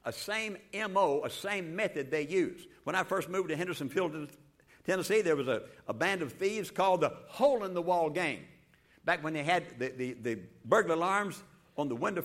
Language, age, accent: English, 60-79, American